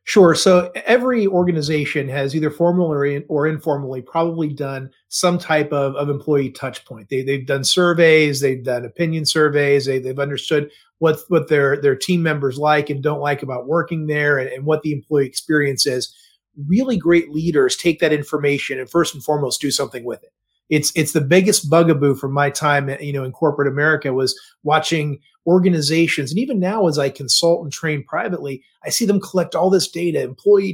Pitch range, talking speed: 140-175 Hz, 185 wpm